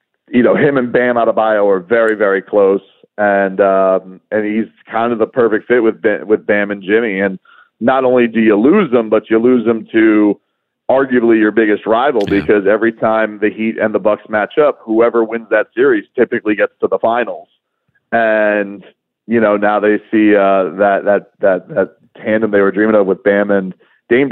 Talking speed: 200 wpm